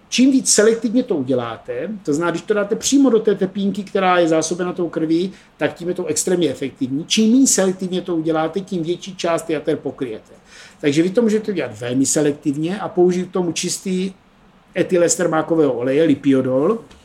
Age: 50-69